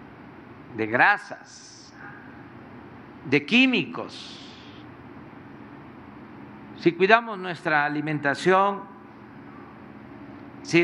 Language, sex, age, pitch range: Spanish, male, 50-69, 155-205 Hz